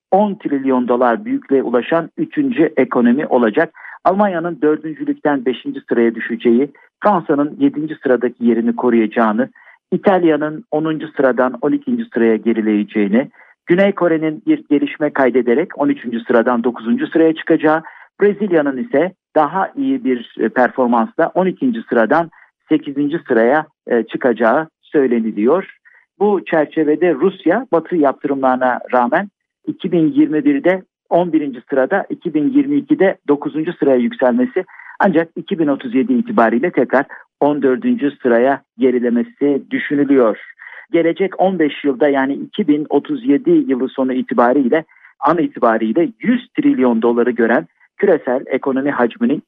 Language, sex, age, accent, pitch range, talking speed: Turkish, male, 50-69, native, 125-185 Hz, 105 wpm